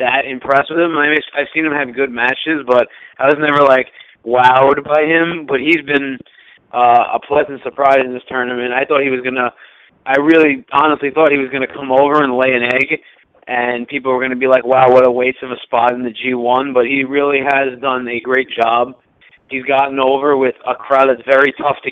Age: 20-39